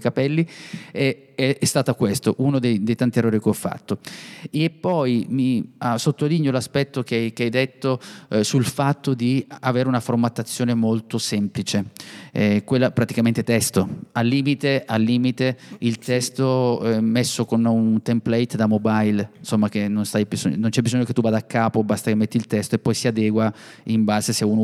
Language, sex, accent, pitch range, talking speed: Italian, male, native, 110-125 Hz, 175 wpm